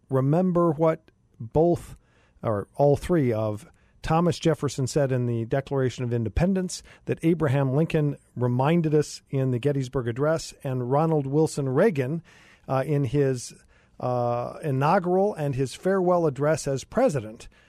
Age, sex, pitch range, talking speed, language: 50-69, male, 135-175 Hz, 130 wpm, English